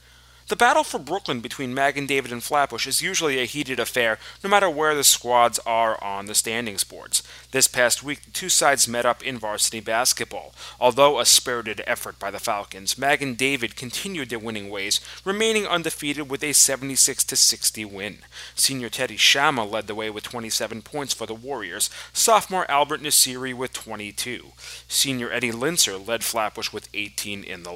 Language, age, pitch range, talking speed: English, 30-49, 110-145 Hz, 175 wpm